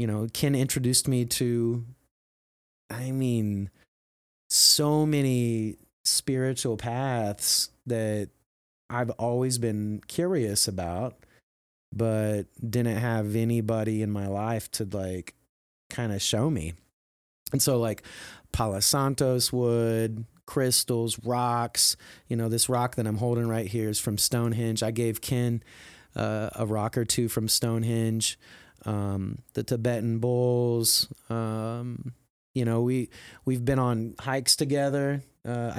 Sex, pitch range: male, 110-130 Hz